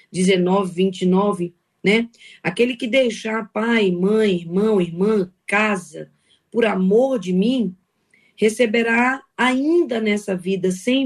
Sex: female